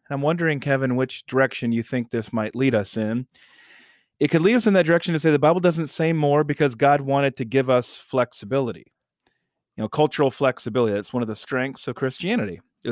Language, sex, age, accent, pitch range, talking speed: English, male, 40-59, American, 130-165 Hz, 210 wpm